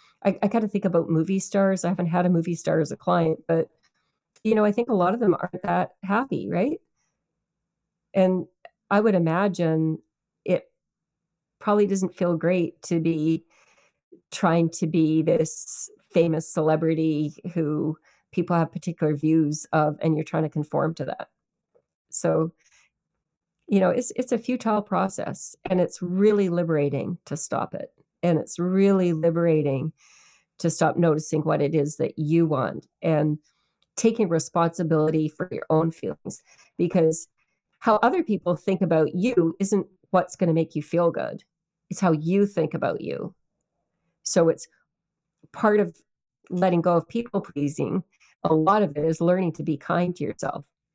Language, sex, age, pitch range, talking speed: English, female, 40-59, 160-185 Hz, 160 wpm